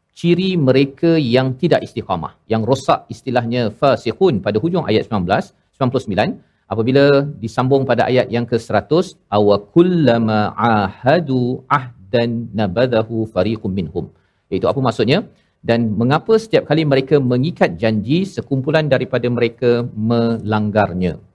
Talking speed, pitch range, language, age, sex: 115 wpm, 115-140 Hz, Malayalam, 40-59, male